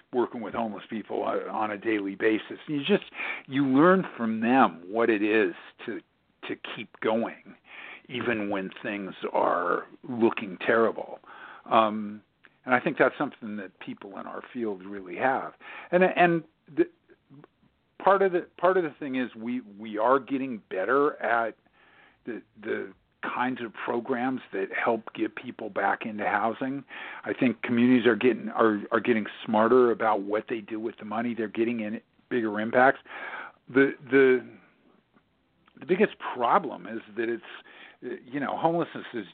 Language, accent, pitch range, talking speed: English, American, 110-135 Hz, 155 wpm